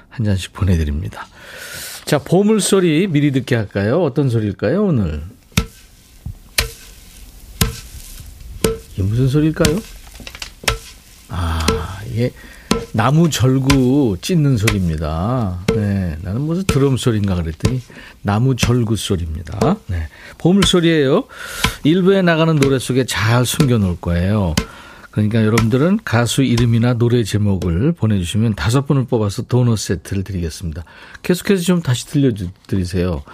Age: 50-69